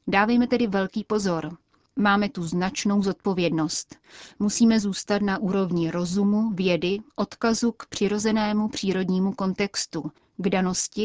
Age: 30-49